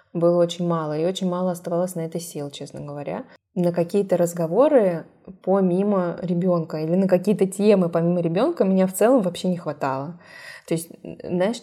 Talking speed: 165 wpm